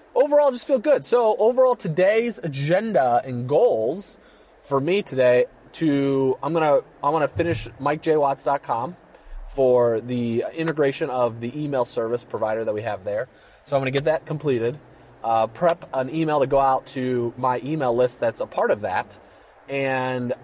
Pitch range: 125-170 Hz